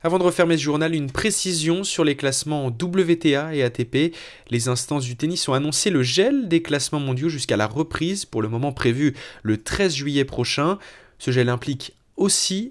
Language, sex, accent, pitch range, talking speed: French, male, French, 130-170 Hz, 185 wpm